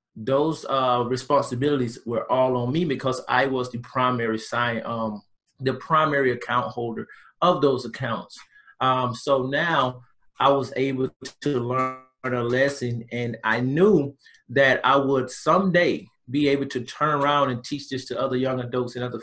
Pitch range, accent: 120-140 Hz, American